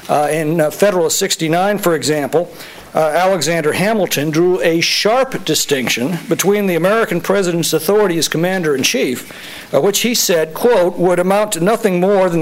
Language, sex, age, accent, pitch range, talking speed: English, male, 60-79, American, 160-200 Hz, 150 wpm